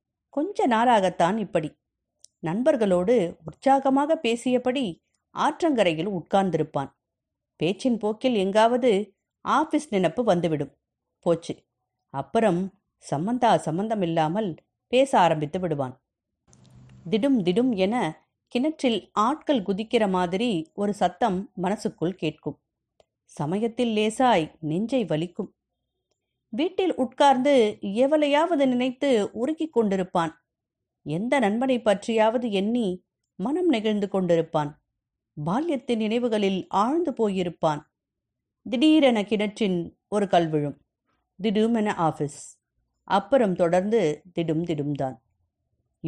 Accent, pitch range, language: native, 160-240 Hz, Tamil